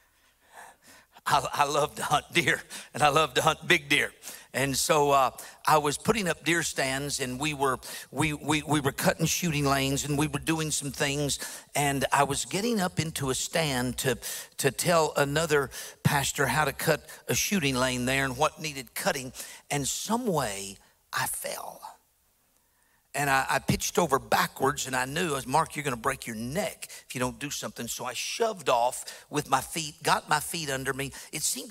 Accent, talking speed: American, 195 wpm